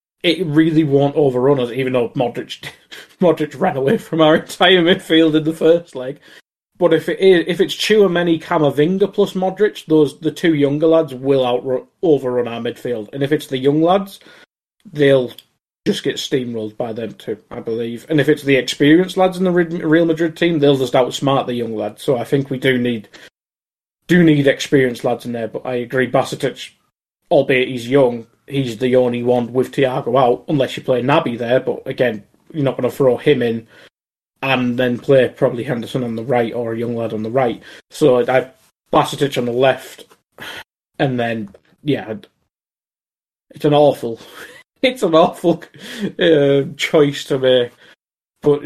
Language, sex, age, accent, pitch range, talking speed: English, male, 20-39, British, 125-160 Hz, 185 wpm